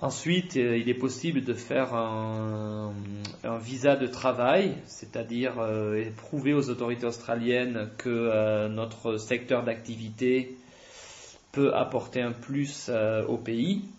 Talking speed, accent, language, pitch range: 125 wpm, French, French, 110-125 Hz